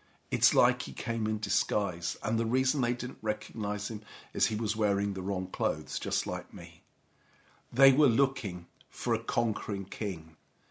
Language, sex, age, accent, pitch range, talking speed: English, male, 50-69, British, 105-130 Hz, 170 wpm